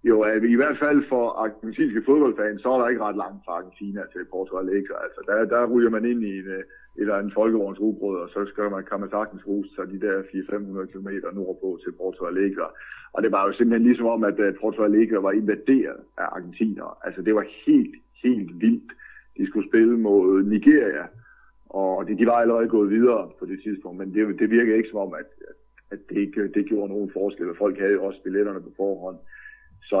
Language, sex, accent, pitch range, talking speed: Danish, male, native, 100-115 Hz, 210 wpm